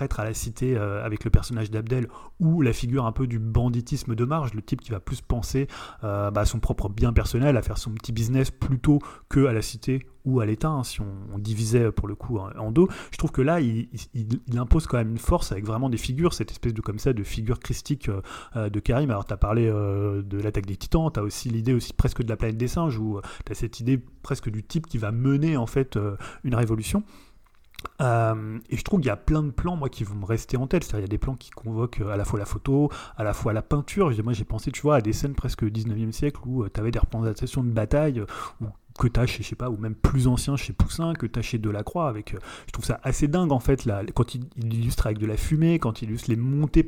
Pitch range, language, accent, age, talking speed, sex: 110-135 Hz, French, French, 30-49, 255 wpm, male